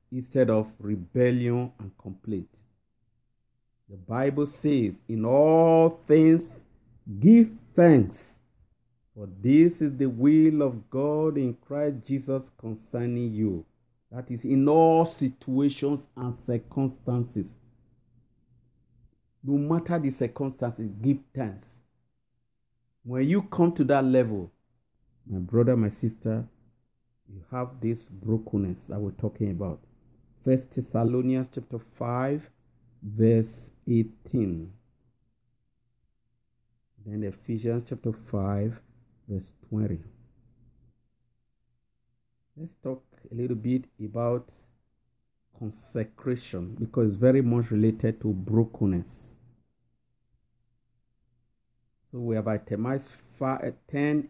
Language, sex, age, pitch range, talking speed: English, male, 50-69, 110-130 Hz, 100 wpm